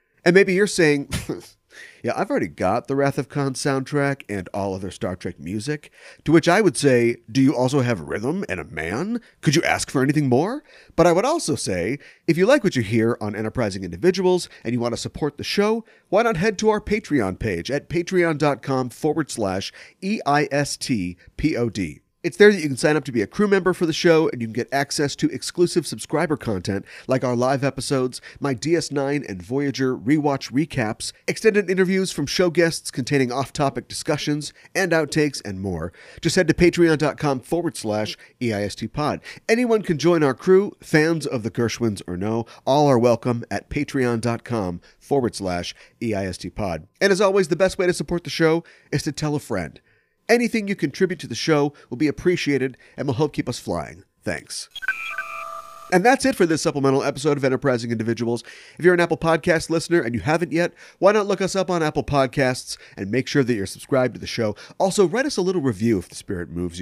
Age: 40-59